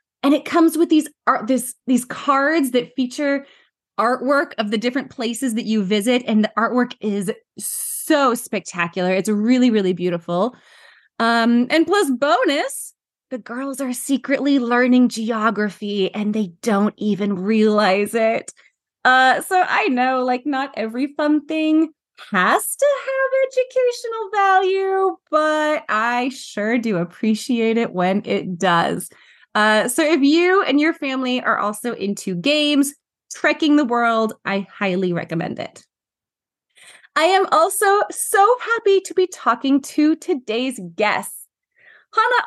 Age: 20-39